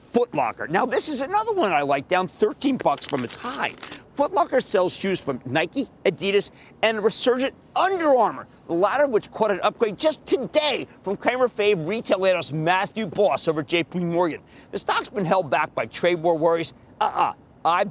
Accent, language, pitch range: American, English, 170-260 Hz